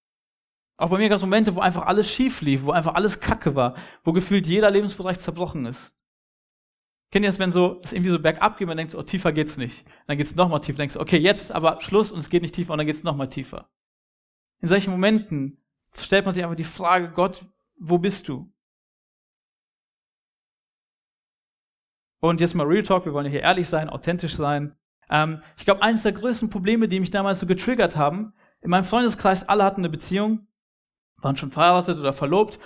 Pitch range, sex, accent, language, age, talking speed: 155-205 Hz, male, German, German, 40-59, 205 wpm